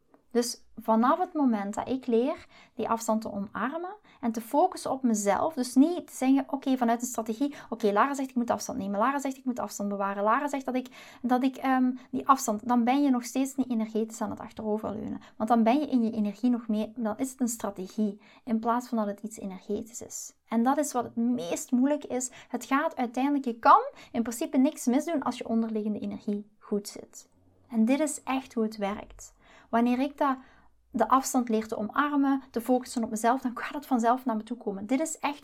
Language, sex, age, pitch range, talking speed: Dutch, female, 20-39, 220-265 Hz, 225 wpm